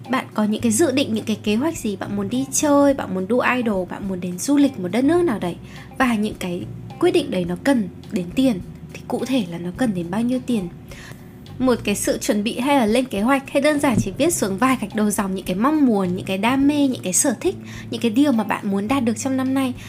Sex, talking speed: female, 280 wpm